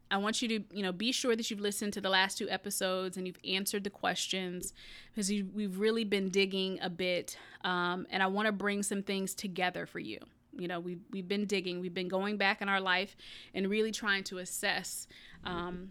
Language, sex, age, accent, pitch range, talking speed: English, female, 20-39, American, 185-215 Hz, 220 wpm